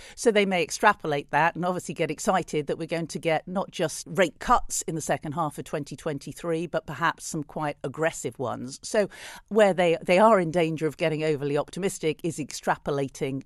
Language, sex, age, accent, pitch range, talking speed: English, female, 50-69, British, 140-165 Hz, 190 wpm